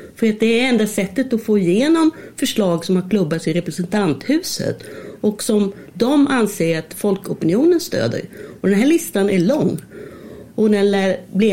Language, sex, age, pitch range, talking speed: Swedish, female, 40-59, 190-240 Hz, 160 wpm